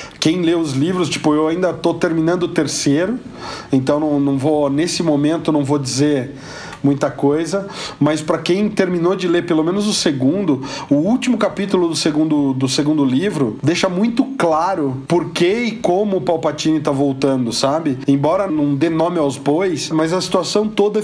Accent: Brazilian